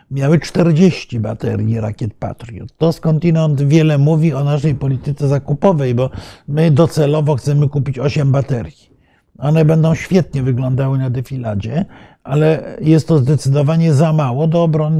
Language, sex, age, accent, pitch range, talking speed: Polish, male, 50-69, native, 125-155 Hz, 135 wpm